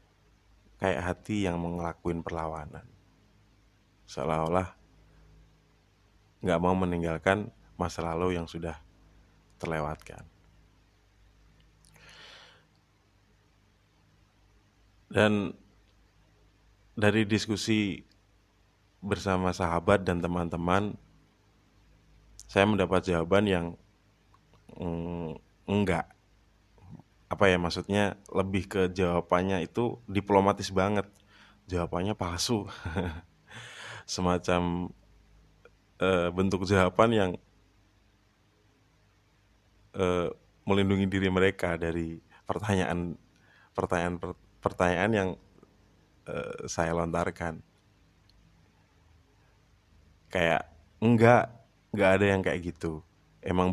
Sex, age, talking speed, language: male, 30-49, 70 wpm, Indonesian